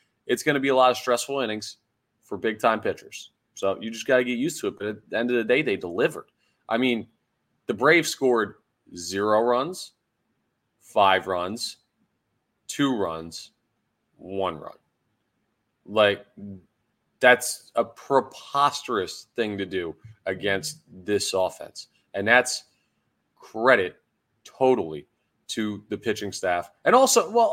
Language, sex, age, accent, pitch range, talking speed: English, male, 30-49, American, 95-125 Hz, 140 wpm